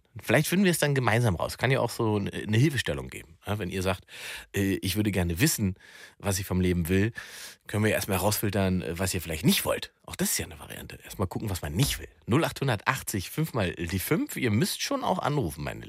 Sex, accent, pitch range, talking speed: male, German, 95-130 Hz, 220 wpm